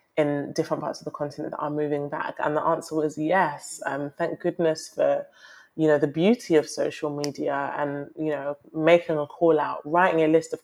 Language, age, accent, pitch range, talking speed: English, 20-39, British, 145-165 Hz, 210 wpm